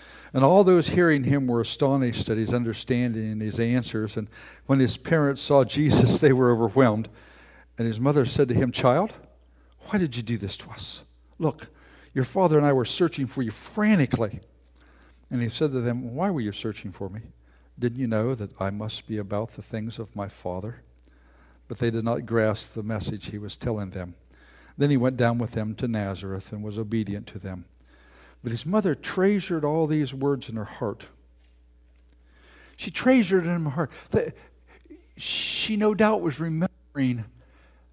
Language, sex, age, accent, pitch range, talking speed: English, male, 60-79, American, 105-165 Hz, 180 wpm